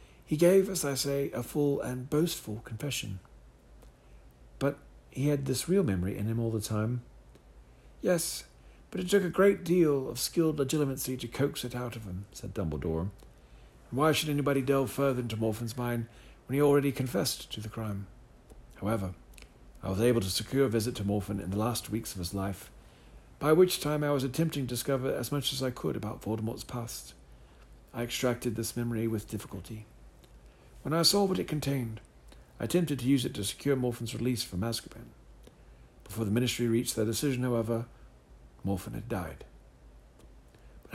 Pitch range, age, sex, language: 95-140 Hz, 50-69, male, English